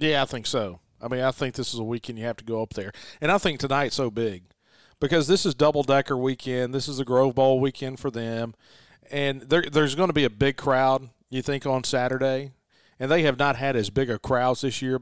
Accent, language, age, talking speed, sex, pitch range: American, English, 40-59, 245 wpm, male, 120-145 Hz